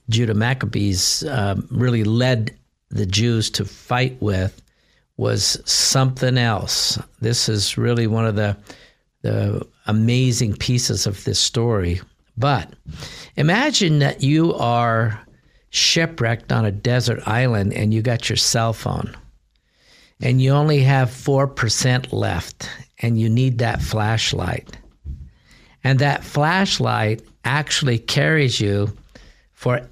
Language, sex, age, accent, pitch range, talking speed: English, male, 50-69, American, 110-140 Hz, 120 wpm